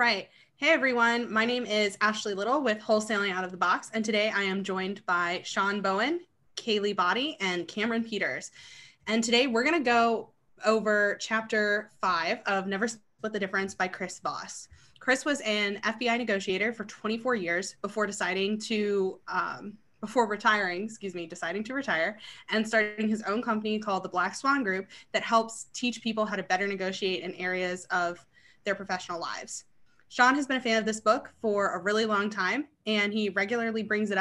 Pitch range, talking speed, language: 195-225 Hz, 180 wpm, English